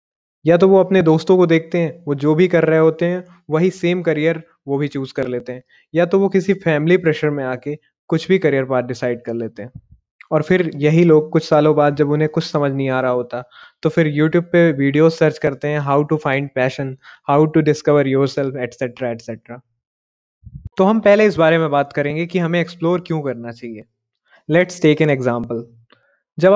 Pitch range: 135-175 Hz